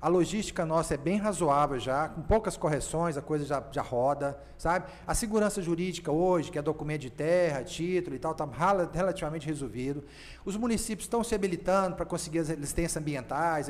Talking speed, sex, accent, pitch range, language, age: 180 wpm, male, Brazilian, 160-205 Hz, Portuguese, 40-59